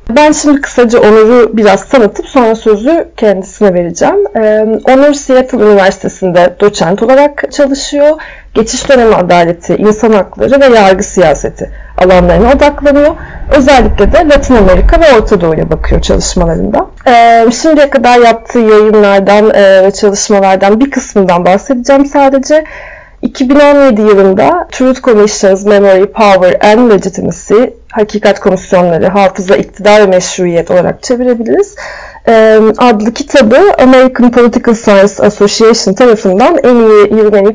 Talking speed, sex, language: 115 wpm, female, Turkish